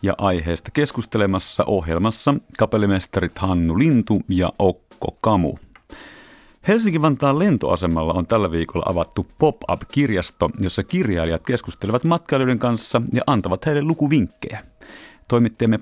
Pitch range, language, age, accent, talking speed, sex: 90-130 Hz, Finnish, 30-49, native, 105 wpm, male